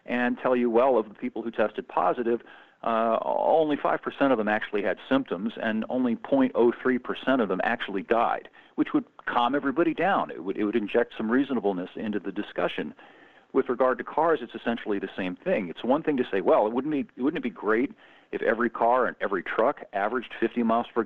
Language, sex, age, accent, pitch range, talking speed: English, male, 50-69, American, 105-125 Hz, 205 wpm